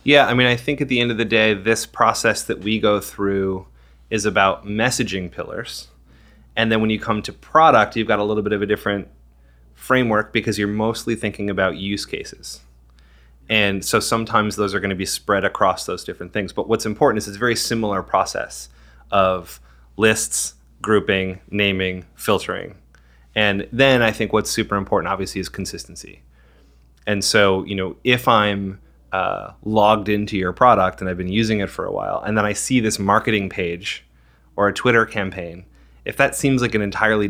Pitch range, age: 90-110 Hz, 30-49